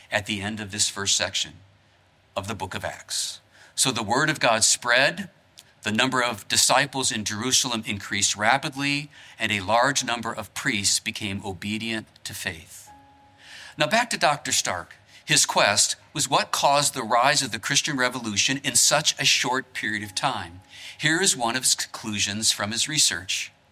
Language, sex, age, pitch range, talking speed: English, male, 50-69, 105-140 Hz, 170 wpm